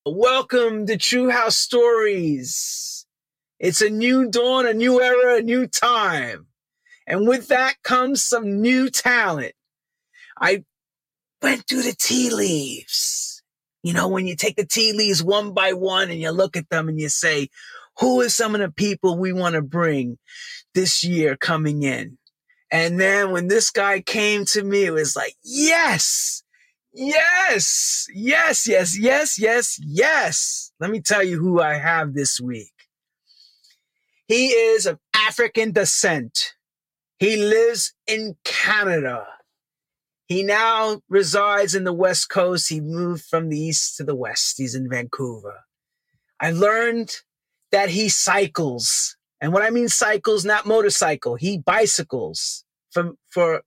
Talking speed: 145 wpm